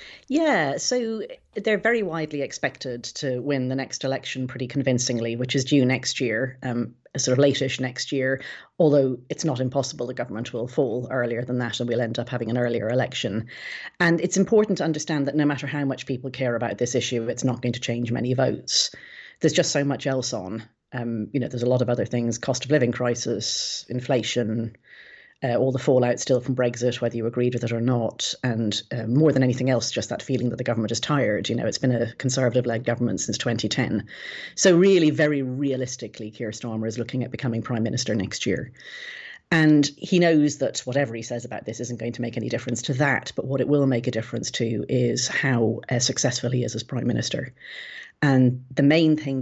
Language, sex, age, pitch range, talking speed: English, female, 30-49, 120-140 Hz, 210 wpm